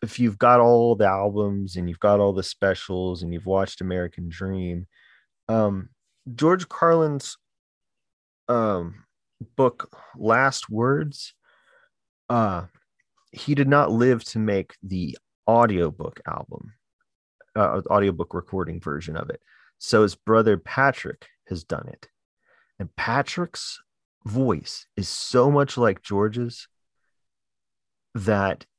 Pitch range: 90-120 Hz